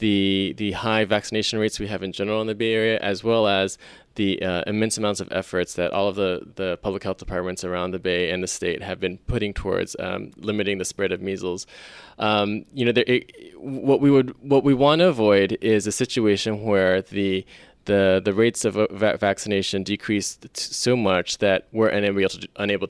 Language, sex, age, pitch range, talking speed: English, male, 20-39, 95-110 Hz, 205 wpm